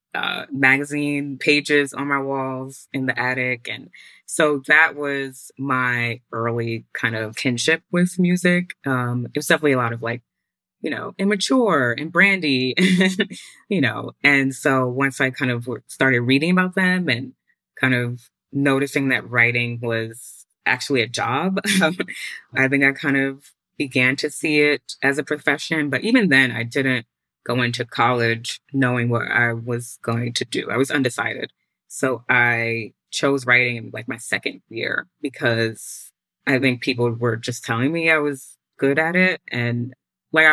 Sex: female